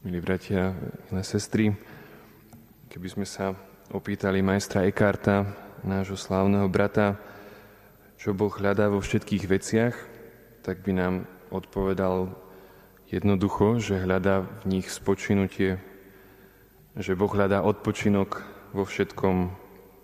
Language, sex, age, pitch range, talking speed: Slovak, male, 20-39, 95-105 Hz, 105 wpm